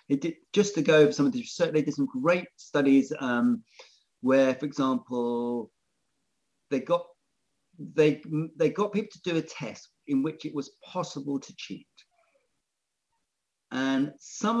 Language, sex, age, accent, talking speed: English, male, 40-59, British, 155 wpm